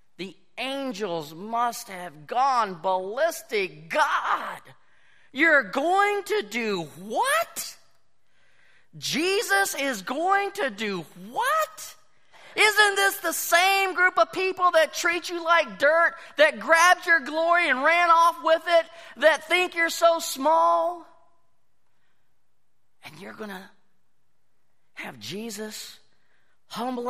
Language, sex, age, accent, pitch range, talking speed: English, male, 40-59, American, 200-330 Hz, 110 wpm